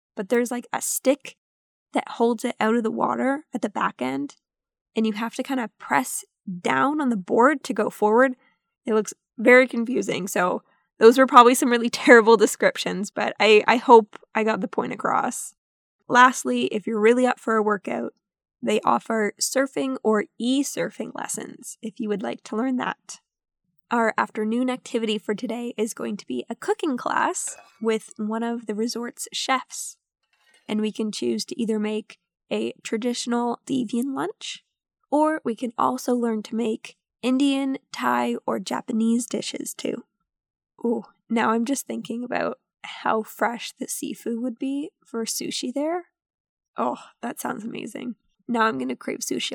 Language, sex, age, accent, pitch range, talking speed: English, female, 10-29, American, 220-265 Hz, 170 wpm